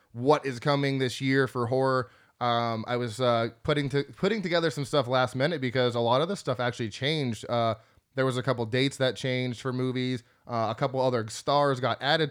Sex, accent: male, American